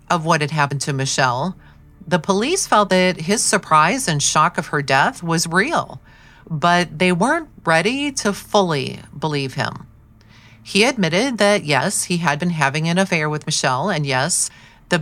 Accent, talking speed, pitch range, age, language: American, 170 wpm, 145-185 Hz, 40-59, English